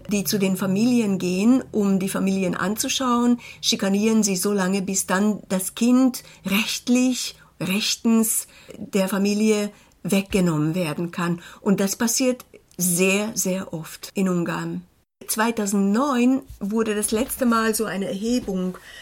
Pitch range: 190-230 Hz